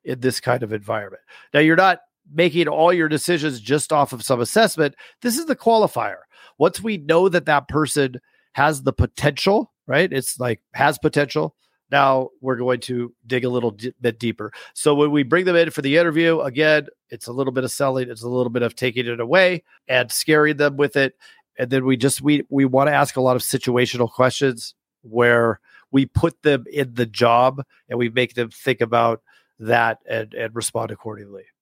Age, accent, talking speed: 40-59, American, 195 wpm